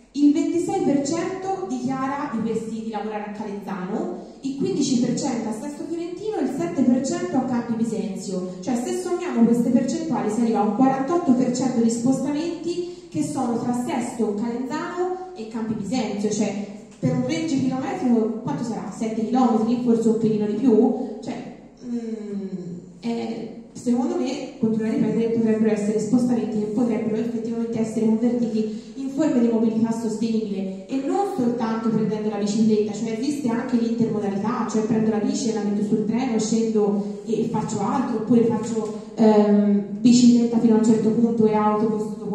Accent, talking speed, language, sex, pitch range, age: native, 150 wpm, Italian, female, 215-260 Hz, 30-49